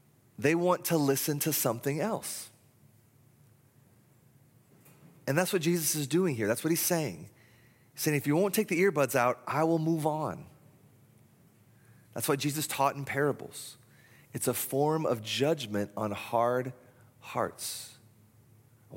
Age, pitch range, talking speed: 30-49, 120-155 Hz, 145 wpm